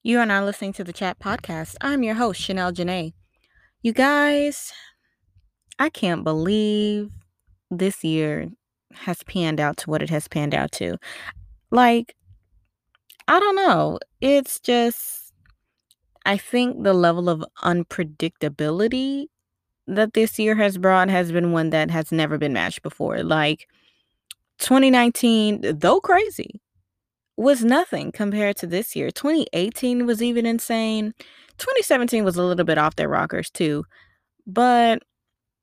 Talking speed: 135 wpm